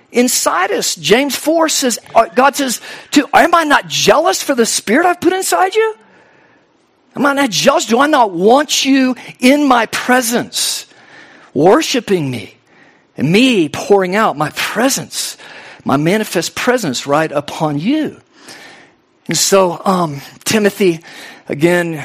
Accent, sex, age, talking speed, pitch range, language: American, male, 50-69, 135 wpm, 180-280 Hz, English